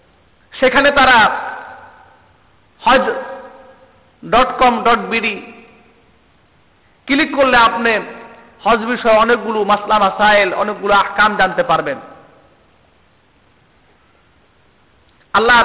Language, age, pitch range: Bengali, 50-69, 190-275 Hz